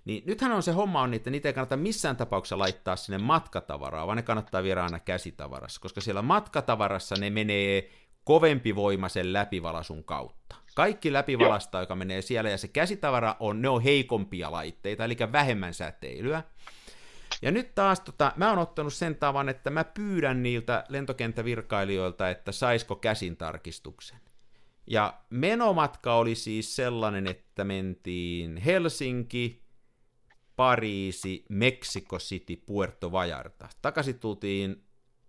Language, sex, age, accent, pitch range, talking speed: Finnish, male, 50-69, native, 95-140 Hz, 135 wpm